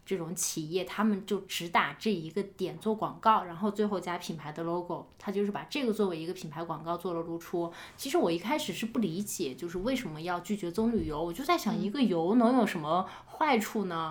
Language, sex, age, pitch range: Chinese, female, 20-39, 170-215 Hz